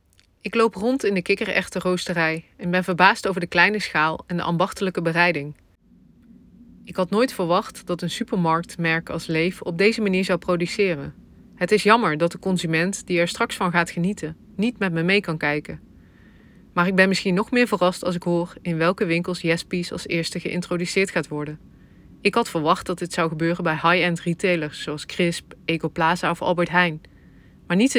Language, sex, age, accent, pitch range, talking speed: Dutch, female, 20-39, Dutch, 165-195 Hz, 185 wpm